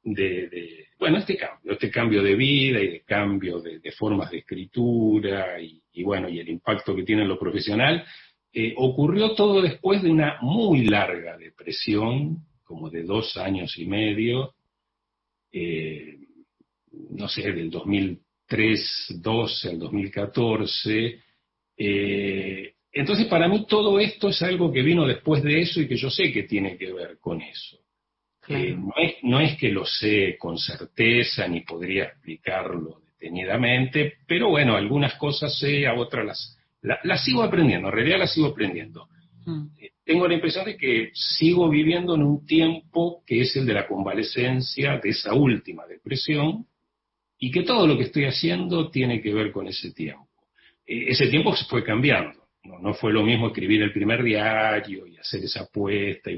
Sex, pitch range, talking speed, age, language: male, 100-150 Hz, 170 wpm, 40-59, Spanish